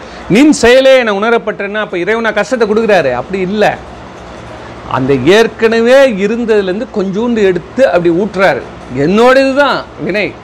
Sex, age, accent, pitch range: male, 40-59, native, 170-230 Hz